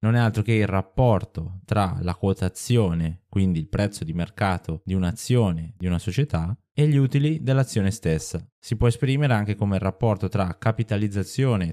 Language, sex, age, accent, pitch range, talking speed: Italian, male, 20-39, native, 90-115 Hz, 170 wpm